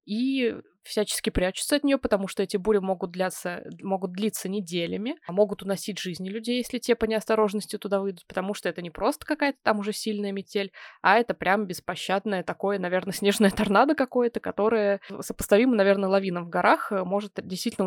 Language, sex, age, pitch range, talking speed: Russian, female, 20-39, 185-225 Hz, 170 wpm